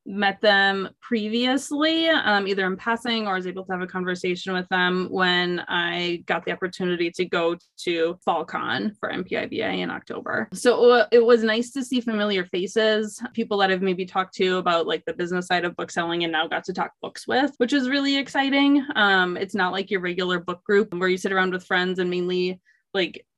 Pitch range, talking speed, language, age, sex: 180-215 Hz, 205 wpm, English, 20-39, female